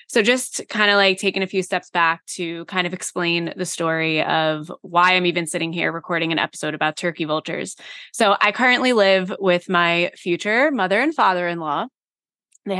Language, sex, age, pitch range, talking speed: English, female, 20-39, 170-195 Hz, 185 wpm